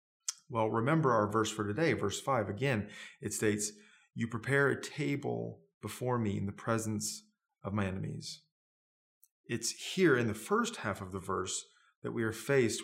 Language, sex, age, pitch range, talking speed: English, male, 30-49, 105-125 Hz, 170 wpm